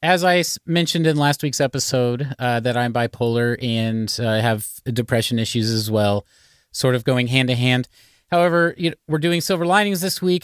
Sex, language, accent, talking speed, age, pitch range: male, English, American, 165 wpm, 30-49, 125-155 Hz